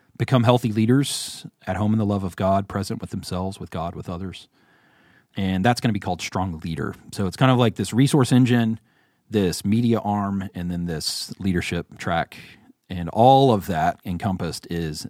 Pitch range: 90-110 Hz